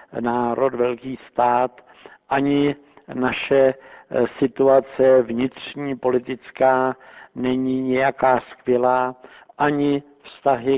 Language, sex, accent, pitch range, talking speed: Czech, male, native, 125-140 Hz, 70 wpm